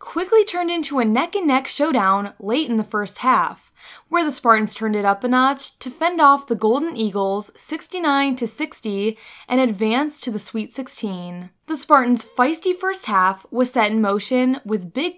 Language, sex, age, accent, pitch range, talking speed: English, female, 10-29, American, 210-270 Hz, 175 wpm